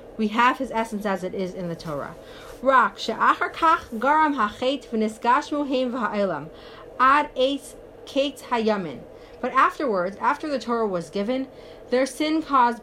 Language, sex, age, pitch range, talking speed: English, female, 30-49, 220-275 Hz, 95 wpm